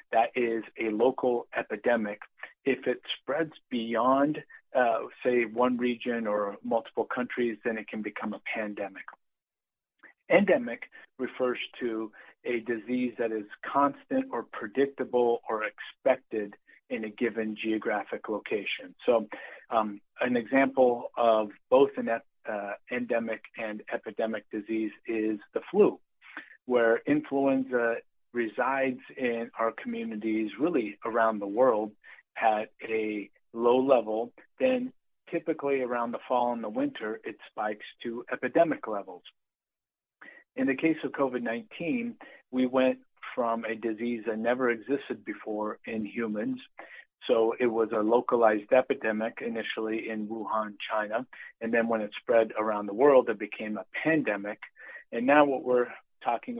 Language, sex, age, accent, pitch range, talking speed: English, male, 40-59, American, 110-130 Hz, 130 wpm